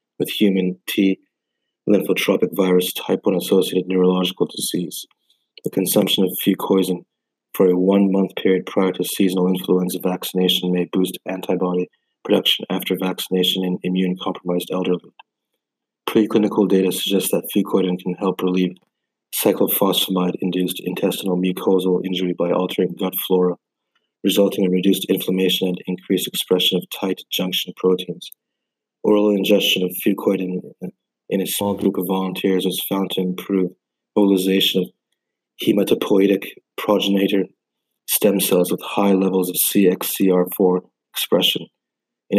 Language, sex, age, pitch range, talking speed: English, male, 20-39, 90-95 Hz, 120 wpm